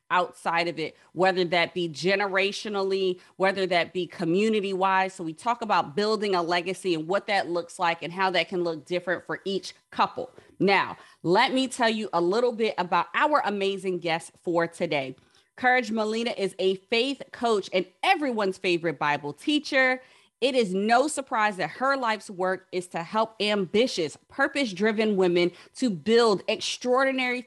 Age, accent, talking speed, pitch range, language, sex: 30-49, American, 165 wpm, 175-225 Hz, English, female